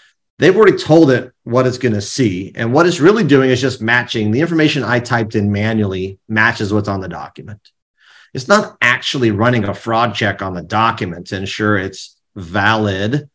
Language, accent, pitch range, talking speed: English, American, 110-140 Hz, 185 wpm